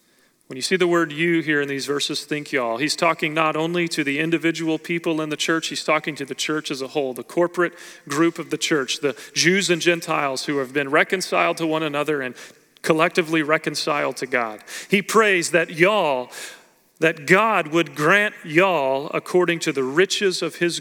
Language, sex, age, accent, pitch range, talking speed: English, male, 40-59, American, 160-220 Hz, 195 wpm